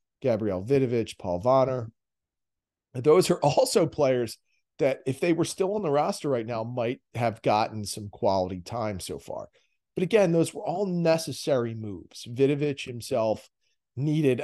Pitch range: 105-140 Hz